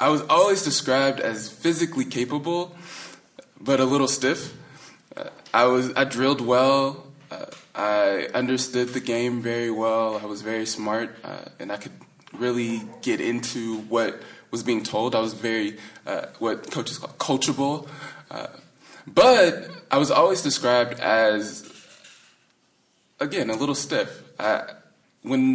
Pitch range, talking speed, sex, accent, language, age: 110-150 Hz, 140 wpm, male, American, English, 20-39